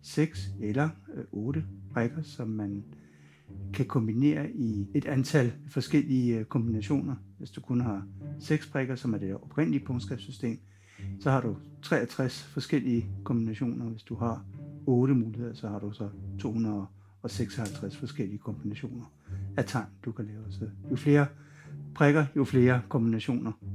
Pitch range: 110-135 Hz